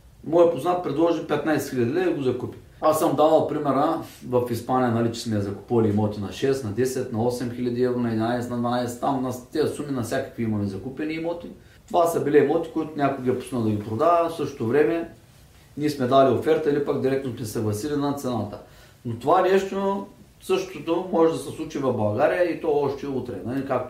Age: 30-49